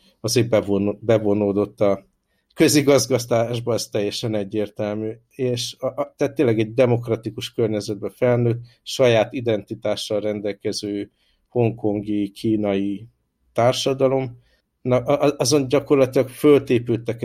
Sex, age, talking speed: male, 60-79, 85 wpm